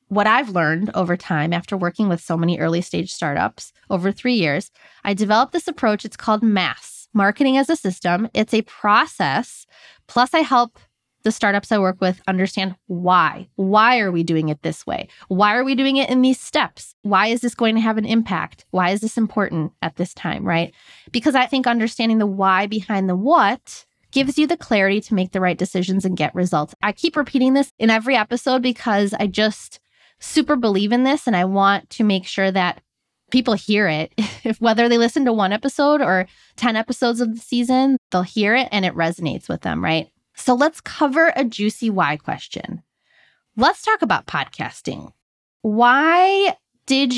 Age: 20-39